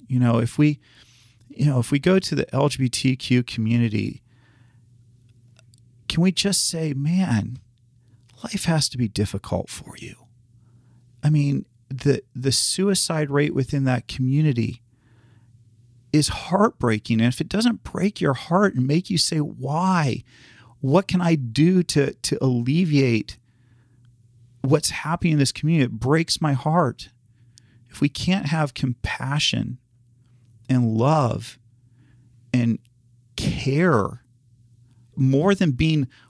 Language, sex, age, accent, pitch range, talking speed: English, male, 40-59, American, 120-150 Hz, 125 wpm